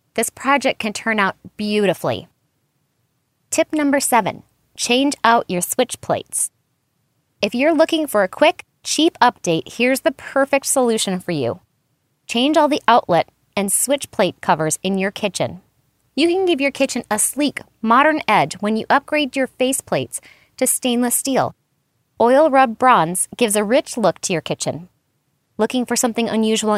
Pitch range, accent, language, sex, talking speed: 195-270 Hz, American, English, female, 160 wpm